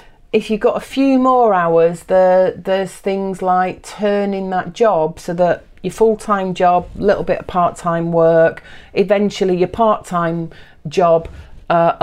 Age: 40-59